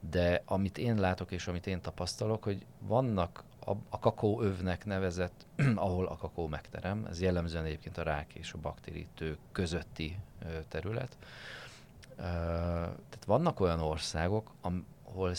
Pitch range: 80-100 Hz